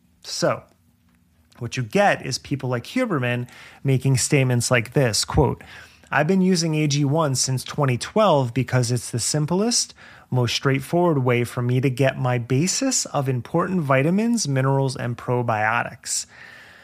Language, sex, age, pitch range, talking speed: English, male, 30-49, 120-160 Hz, 130 wpm